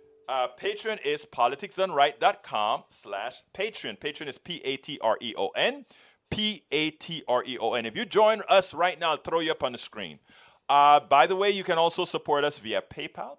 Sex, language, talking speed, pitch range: male, English, 150 wpm, 140-210 Hz